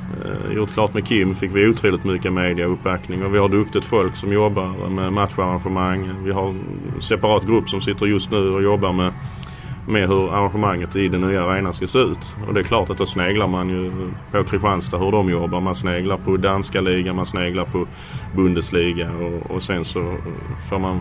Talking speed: 195 wpm